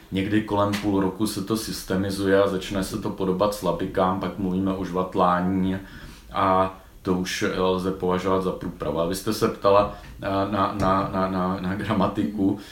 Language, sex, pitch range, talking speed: Czech, male, 95-100 Hz, 165 wpm